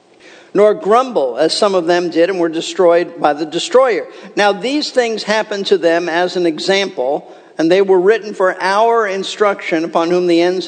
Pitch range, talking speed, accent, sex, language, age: 170-285 Hz, 185 wpm, American, male, English, 50-69